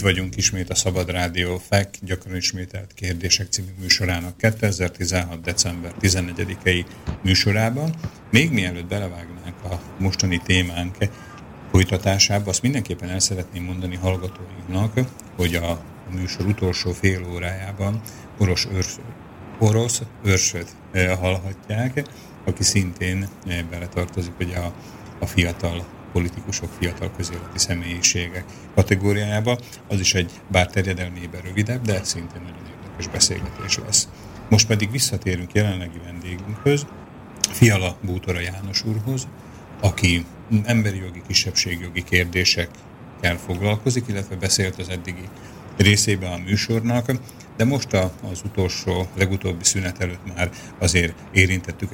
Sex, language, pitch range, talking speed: male, Slovak, 90-105 Hz, 110 wpm